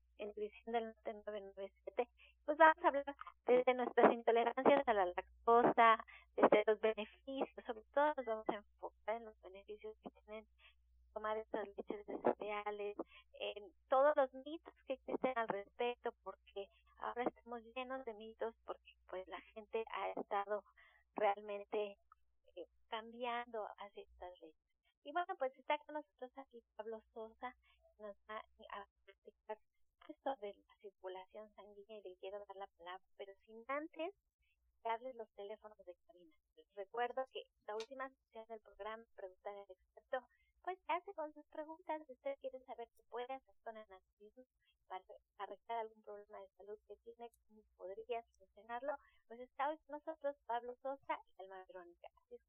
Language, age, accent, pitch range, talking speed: Spanish, 30-49, American, 205-270 Hz, 155 wpm